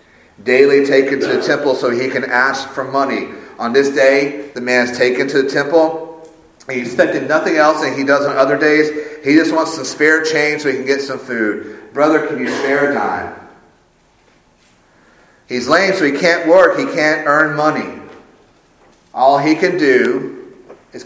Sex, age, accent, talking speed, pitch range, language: male, 40-59, American, 180 wpm, 135-160 Hz, English